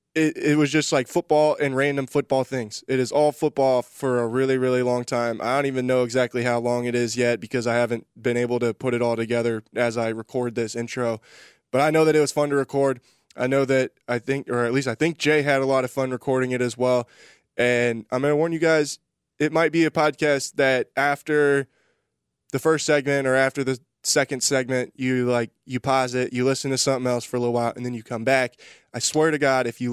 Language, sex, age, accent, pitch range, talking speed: English, male, 20-39, American, 120-145 Hz, 245 wpm